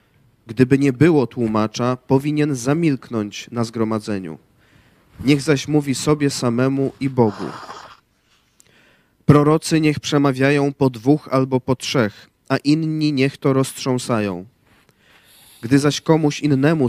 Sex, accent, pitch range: male, native, 120-140 Hz